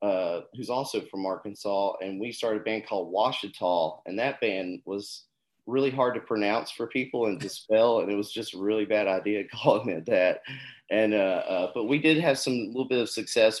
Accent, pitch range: American, 95-115 Hz